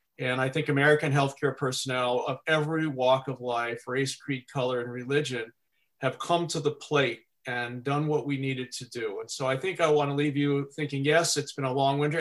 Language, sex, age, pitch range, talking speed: English, male, 40-59, 130-155 Hz, 210 wpm